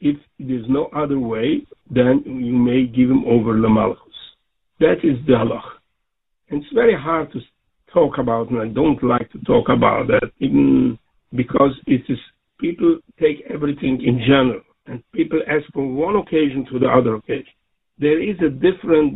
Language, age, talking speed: English, 60-79, 155 wpm